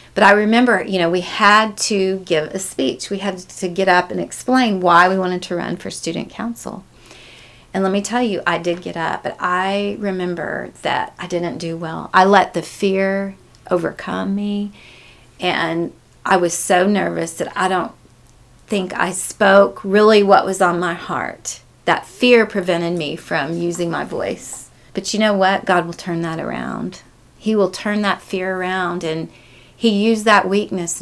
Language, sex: English, female